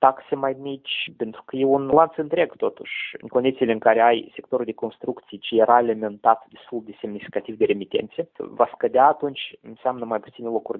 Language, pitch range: Romanian, 115-150 Hz